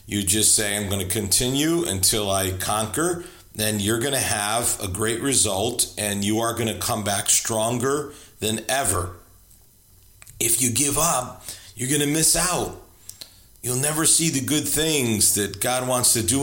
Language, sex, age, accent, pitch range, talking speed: English, male, 40-59, American, 100-130 Hz, 175 wpm